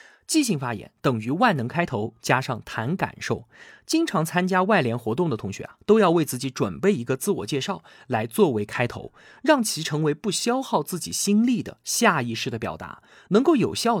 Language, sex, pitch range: Chinese, male, 120-200 Hz